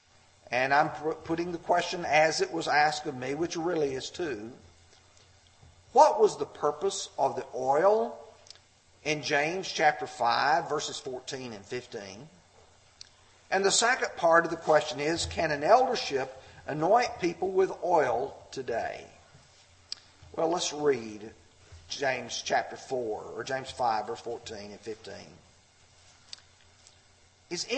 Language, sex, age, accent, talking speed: English, male, 50-69, American, 125 wpm